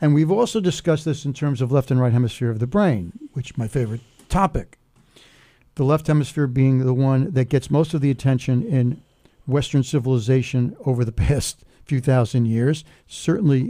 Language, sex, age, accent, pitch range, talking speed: English, male, 60-79, American, 125-155 Hz, 185 wpm